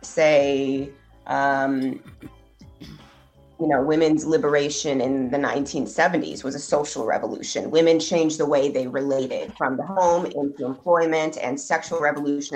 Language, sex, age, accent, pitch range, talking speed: English, female, 30-49, American, 140-175 Hz, 130 wpm